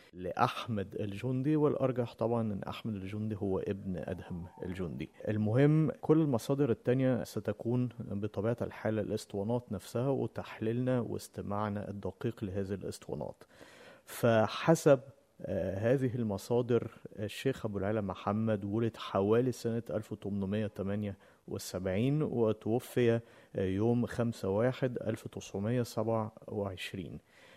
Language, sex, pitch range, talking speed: Arabic, male, 100-120 Hz, 85 wpm